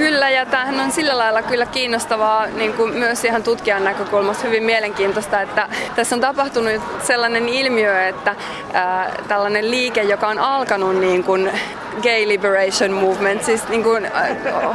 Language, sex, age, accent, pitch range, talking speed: Finnish, female, 20-39, native, 190-230 Hz, 155 wpm